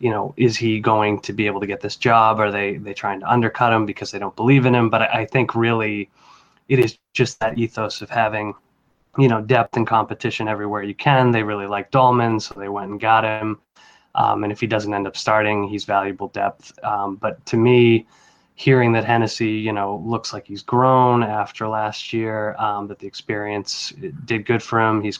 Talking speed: 215 wpm